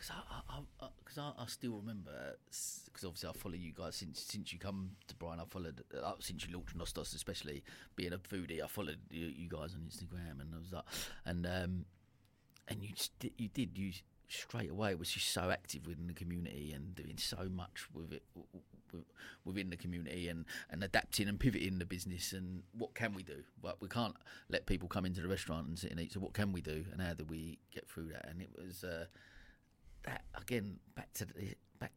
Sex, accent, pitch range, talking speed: male, British, 85-100 Hz, 225 wpm